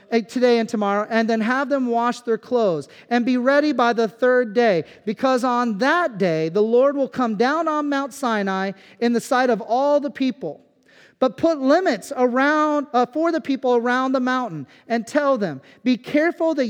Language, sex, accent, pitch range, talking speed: English, male, American, 220-275 Hz, 190 wpm